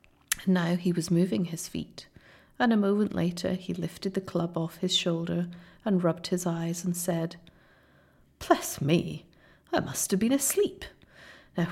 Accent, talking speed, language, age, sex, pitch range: British, 165 wpm, English, 40-59, female, 175-200 Hz